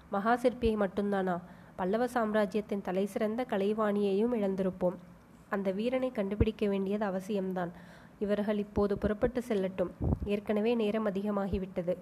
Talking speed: 100 wpm